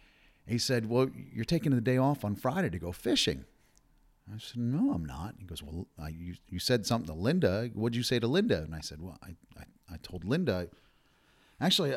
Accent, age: American, 40-59